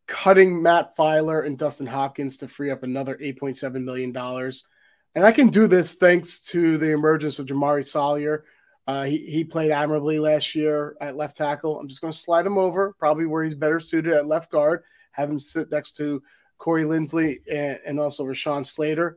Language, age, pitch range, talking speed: English, 30-49, 140-160 Hz, 195 wpm